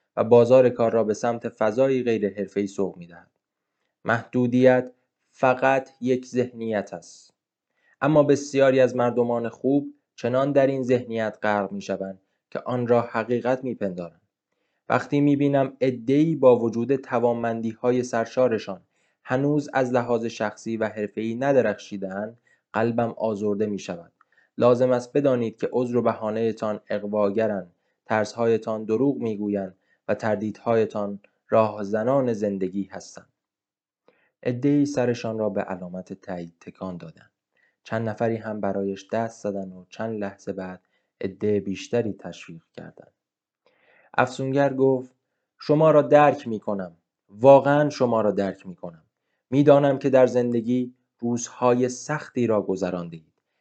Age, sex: 20-39, male